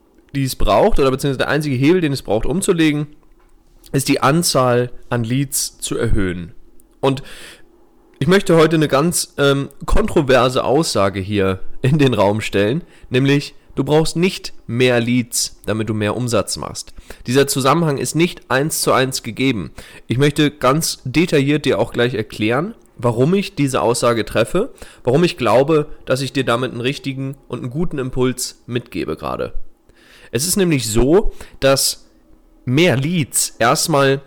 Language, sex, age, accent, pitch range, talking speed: German, male, 30-49, German, 115-145 Hz, 155 wpm